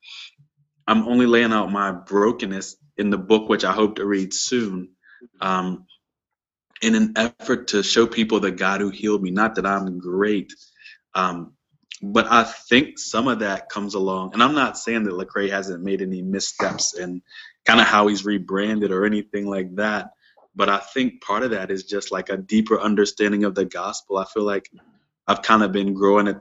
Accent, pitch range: American, 95-105 Hz